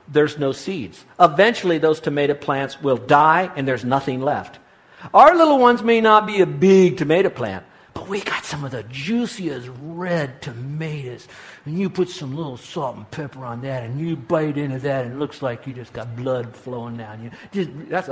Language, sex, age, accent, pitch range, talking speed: English, male, 60-79, American, 125-180 Hz, 200 wpm